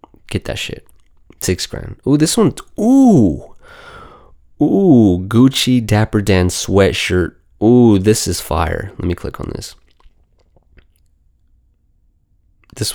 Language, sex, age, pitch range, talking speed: English, male, 20-39, 85-110 Hz, 110 wpm